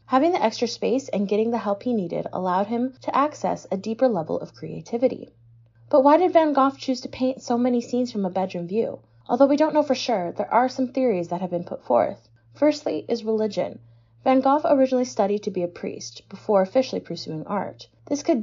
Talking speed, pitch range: 215 wpm, 175-255 Hz